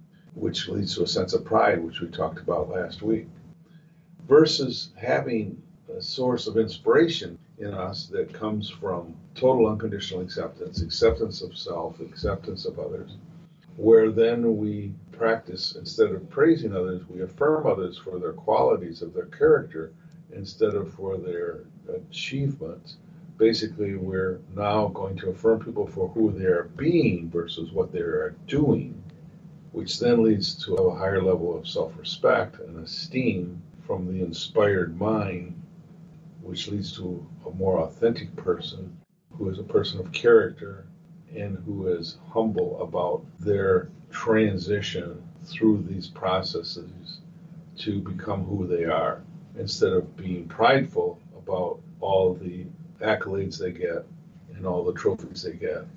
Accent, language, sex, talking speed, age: American, English, male, 140 wpm, 50-69